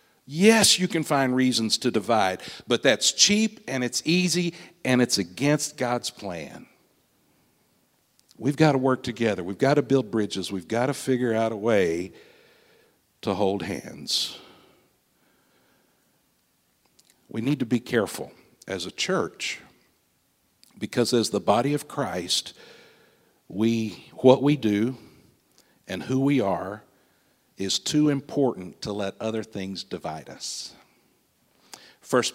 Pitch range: 115-150 Hz